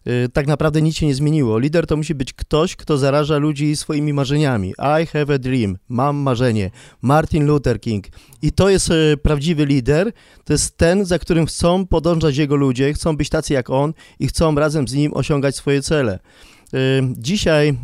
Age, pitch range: 30-49, 135-165 Hz